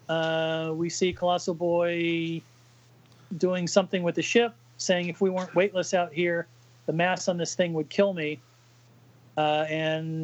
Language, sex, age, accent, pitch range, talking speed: English, male, 40-59, American, 135-185 Hz, 160 wpm